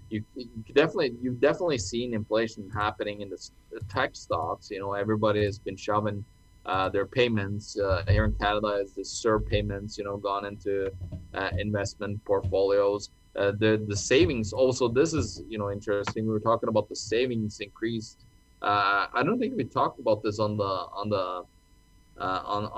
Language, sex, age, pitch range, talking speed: English, male, 20-39, 95-110 Hz, 170 wpm